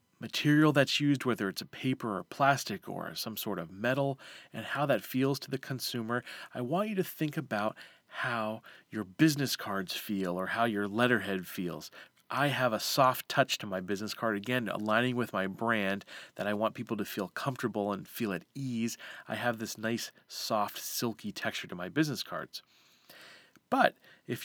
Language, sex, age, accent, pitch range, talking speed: English, male, 30-49, American, 110-140 Hz, 185 wpm